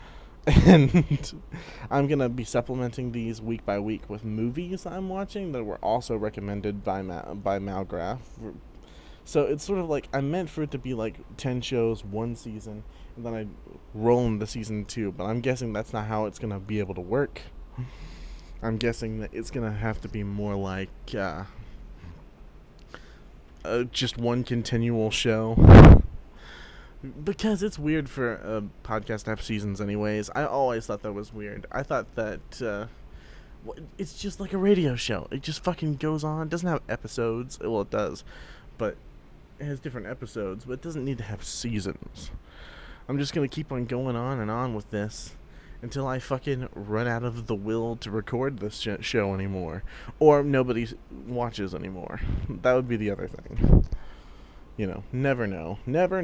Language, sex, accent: English, male, American